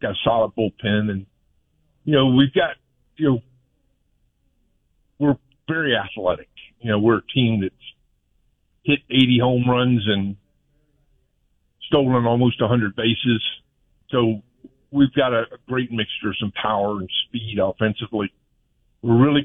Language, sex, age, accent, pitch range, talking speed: English, male, 50-69, American, 100-125 Hz, 140 wpm